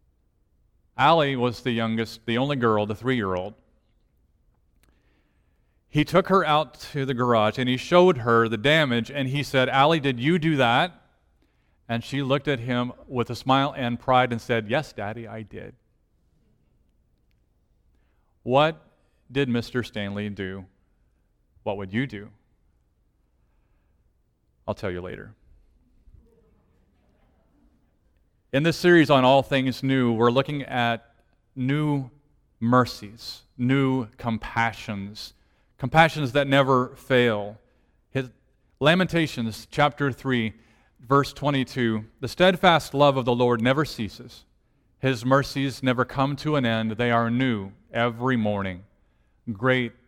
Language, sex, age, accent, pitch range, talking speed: English, male, 40-59, American, 110-135 Hz, 125 wpm